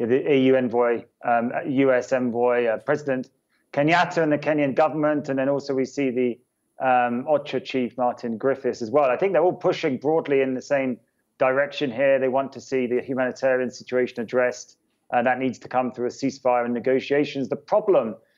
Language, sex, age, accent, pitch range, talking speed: English, male, 20-39, British, 130-150 Hz, 185 wpm